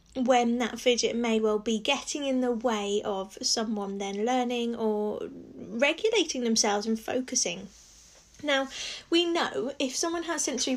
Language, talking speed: English, 145 wpm